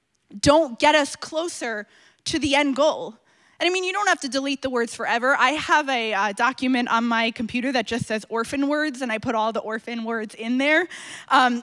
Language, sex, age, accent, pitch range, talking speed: English, female, 20-39, American, 225-285 Hz, 215 wpm